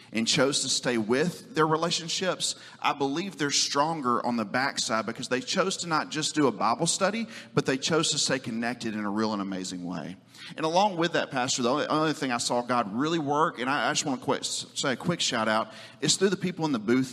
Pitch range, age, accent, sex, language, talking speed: 115-145 Hz, 40-59, American, male, English, 230 wpm